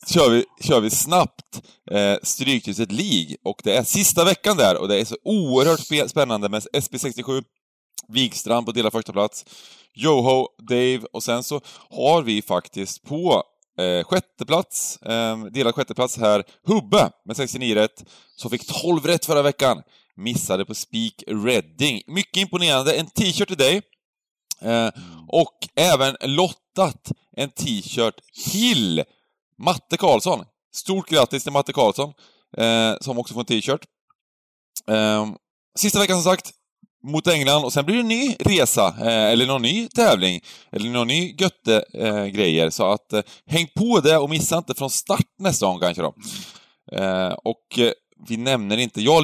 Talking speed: 150 wpm